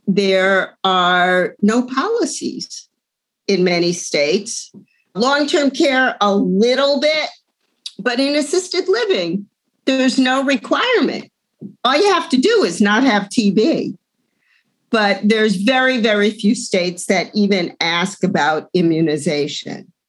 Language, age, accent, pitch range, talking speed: English, 50-69, American, 180-230 Hz, 115 wpm